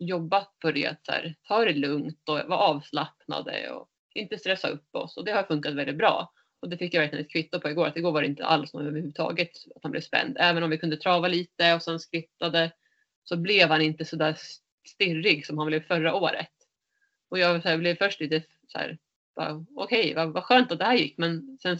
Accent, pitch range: native, 155-180 Hz